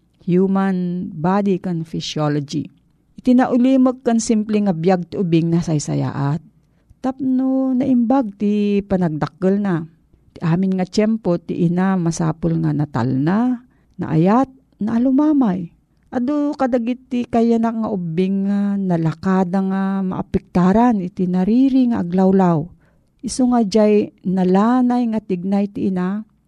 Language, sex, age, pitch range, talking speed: Filipino, female, 40-59, 170-230 Hz, 115 wpm